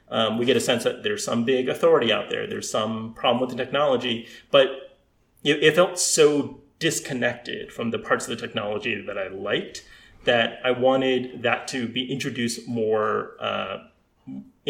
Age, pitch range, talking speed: 30-49, 130-185 Hz, 170 wpm